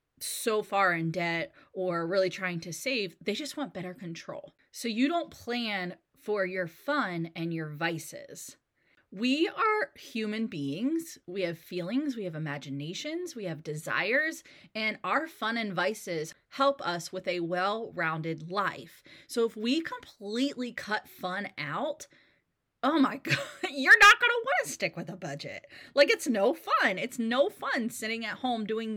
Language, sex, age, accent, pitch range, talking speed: English, female, 30-49, American, 185-265 Hz, 165 wpm